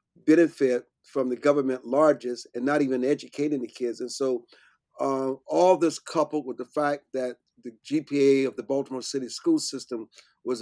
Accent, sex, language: American, male, English